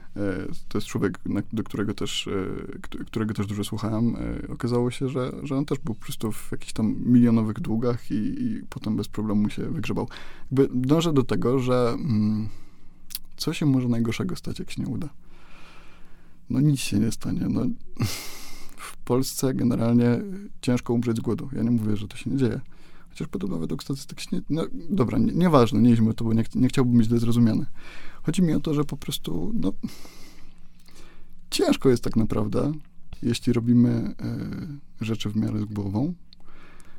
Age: 20-39